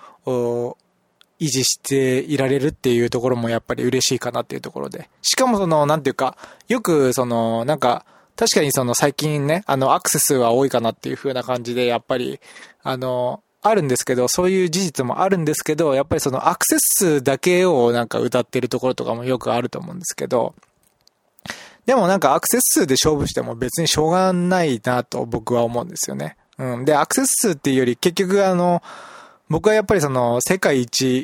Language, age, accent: Japanese, 20-39, native